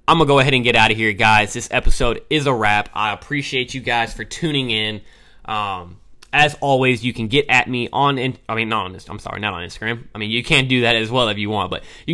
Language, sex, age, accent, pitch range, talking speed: English, male, 20-39, American, 105-125 Hz, 265 wpm